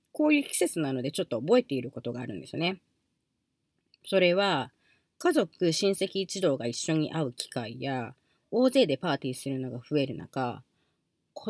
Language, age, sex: Japanese, 40-59, female